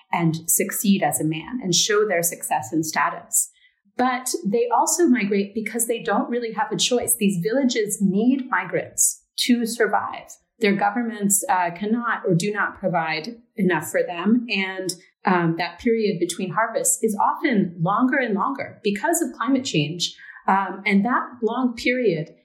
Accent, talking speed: American, 160 wpm